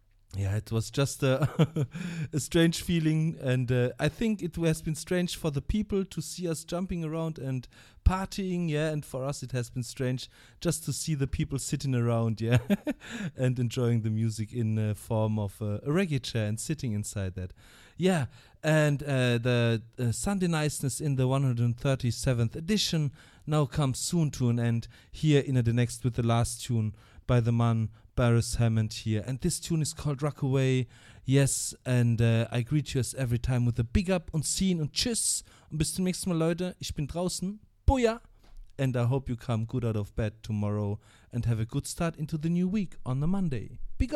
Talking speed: 195 wpm